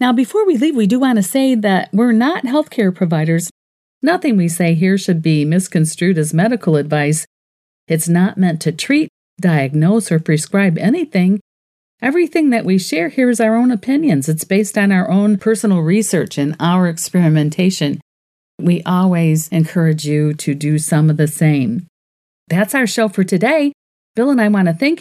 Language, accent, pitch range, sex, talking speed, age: English, American, 170-250 Hz, female, 175 wpm, 50-69